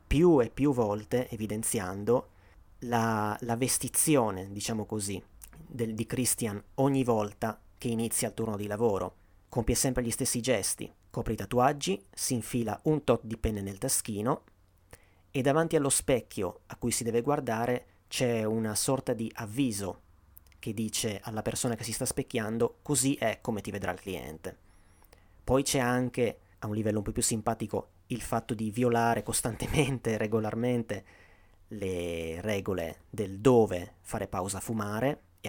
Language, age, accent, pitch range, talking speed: Italian, 30-49, native, 95-125 Hz, 155 wpm